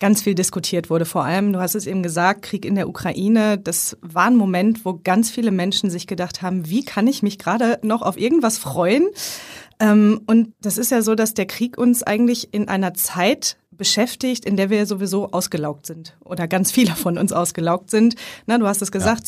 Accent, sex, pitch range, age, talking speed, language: German, female, 190-230 Hz, 30-49, 205 wpm, German